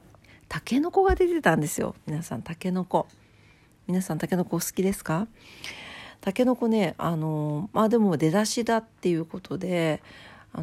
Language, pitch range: Japanese, 165-225 Hz